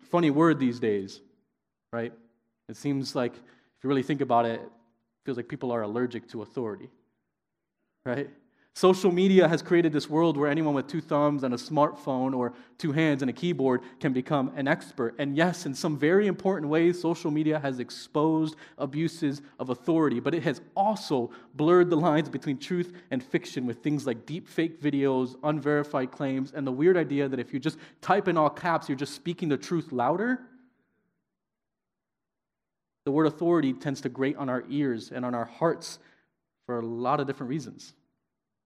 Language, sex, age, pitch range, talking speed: English, male, 20-39, 125-165 Hz, 180 wpm